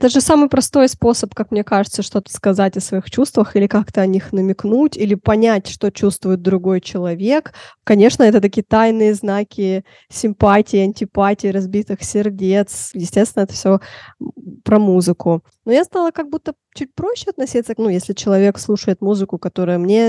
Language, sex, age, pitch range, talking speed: Russian, female, 20-39, 195-245 Hz, 160 wpm